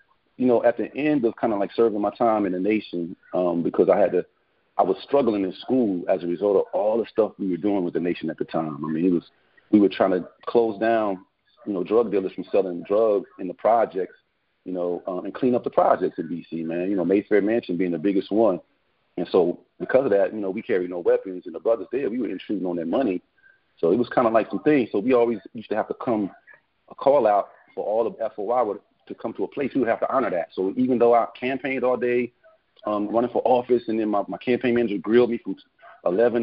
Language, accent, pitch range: English, American, 100-120 Hz